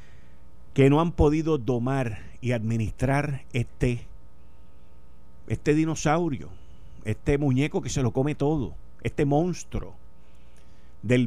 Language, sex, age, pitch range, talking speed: Spanish, male, 50-69, 120-200 Hz, 105 wpm